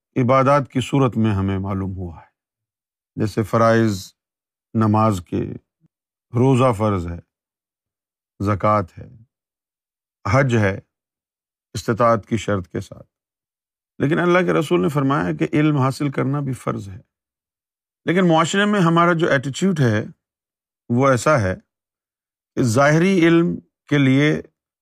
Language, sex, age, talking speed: Urdu, male, 50-69, 125 wpm